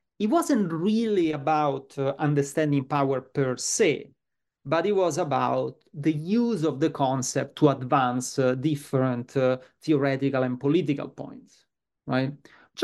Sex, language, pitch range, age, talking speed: male, English, 130-155 Hz, 30-49, 135 wpm